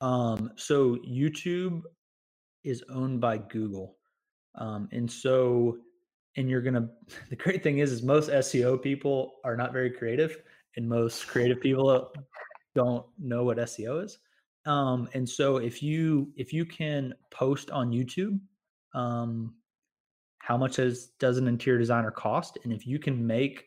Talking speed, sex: 150 wpm, male